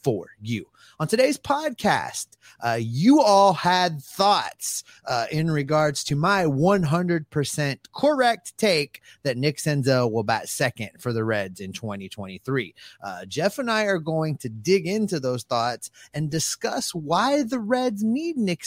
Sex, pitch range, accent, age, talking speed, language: male, 120-185 Hz, American, 30-49, 150 wpm, English